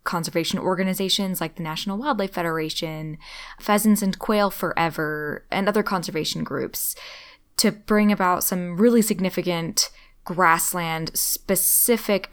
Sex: female